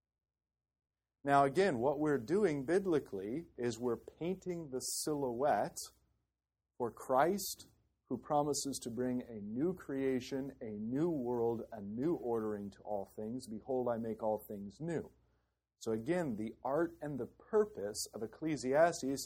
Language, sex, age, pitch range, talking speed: English, male, 40-59, 115-155 Hz, 135 wpm